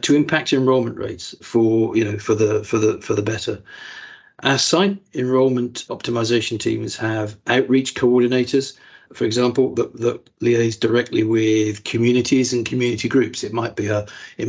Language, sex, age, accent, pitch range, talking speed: English, male, 50-69, British, 115-140 Hz, 155 wpm